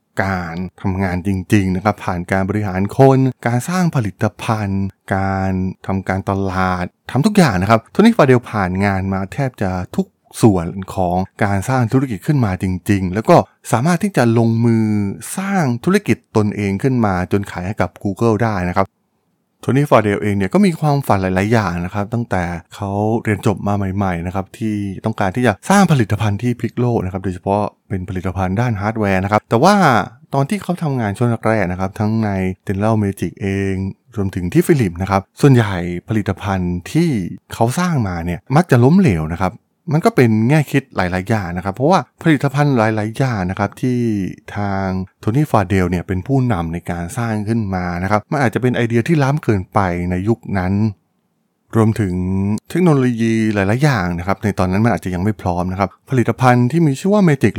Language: Thai